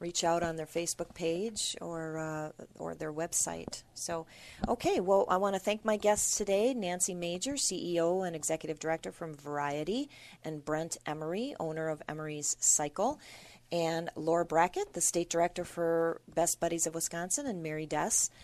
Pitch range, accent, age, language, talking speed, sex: 150-185 Hz, American, 40-59, English, 165 wpm, female